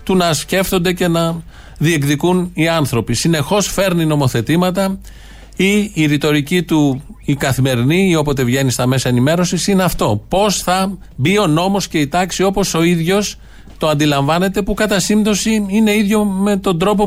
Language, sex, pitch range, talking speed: Greek, male, 125-175 Hz, 160 wpm